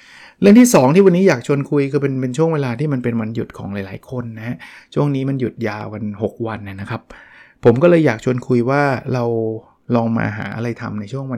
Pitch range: 115-140 Hz